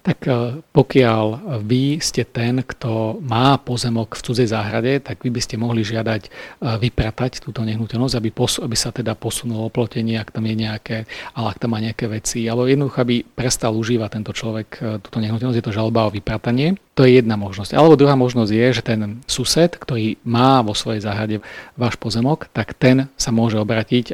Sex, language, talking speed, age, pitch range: male, Slovak, 185 wpm, 40-59, 110-125 Hz